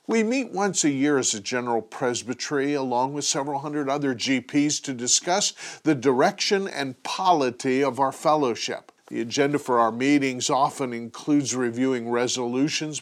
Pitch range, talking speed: 120-150 Hz, 150 wpm